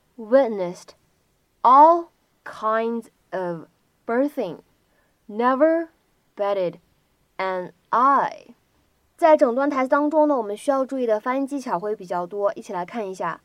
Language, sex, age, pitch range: Chinese, female, 10-29, 200-295 Hz